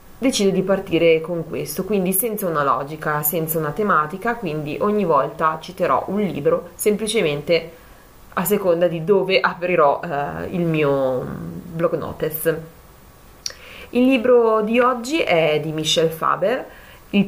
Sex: female